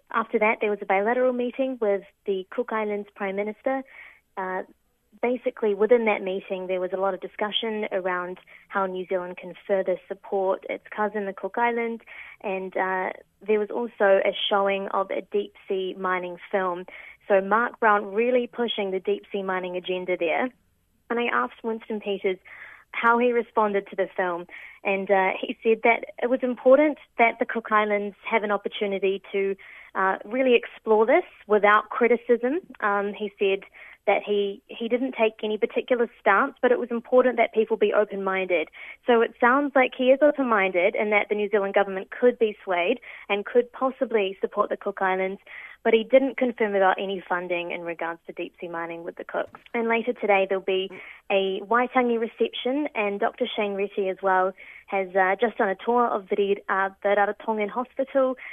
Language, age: English, 20-39